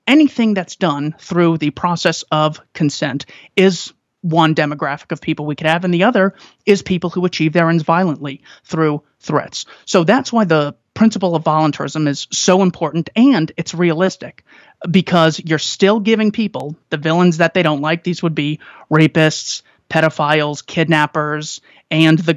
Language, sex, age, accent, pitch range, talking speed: English, male, 30-49, American, 155-185 Hz, 160 wpm